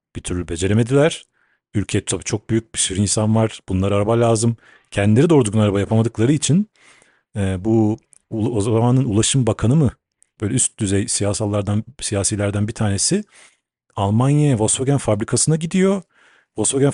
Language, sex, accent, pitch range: Turkish, male, native, 100-130 Hz